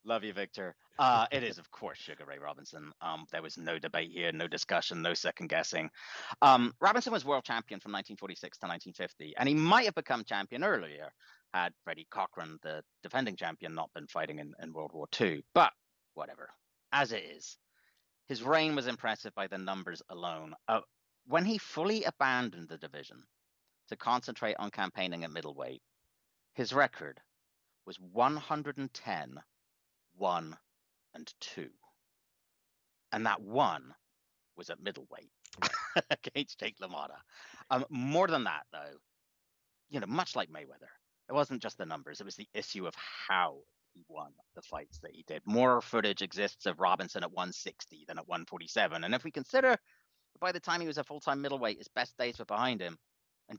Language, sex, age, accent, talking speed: English, male, 40-59, British, 170 wpm